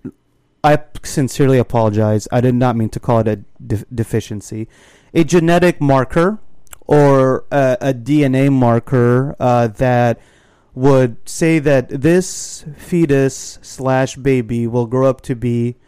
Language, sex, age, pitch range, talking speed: English, male, 30-49, 120-150 Hz, 130 wpm